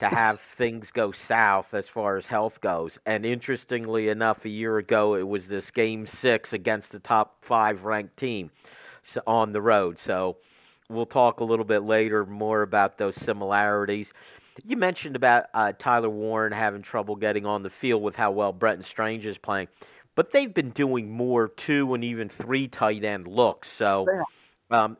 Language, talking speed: English, 180 wpm